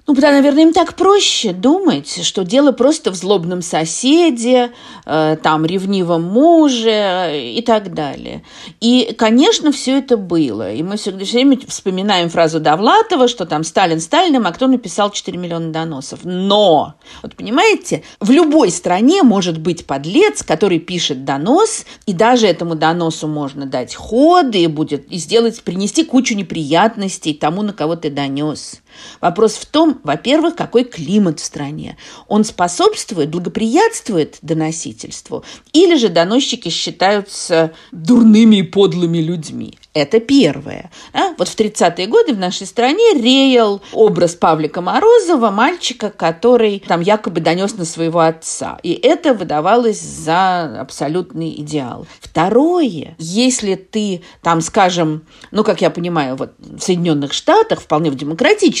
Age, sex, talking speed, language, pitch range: 40-59, female, 140 wpm, Russian, 165-250 Hz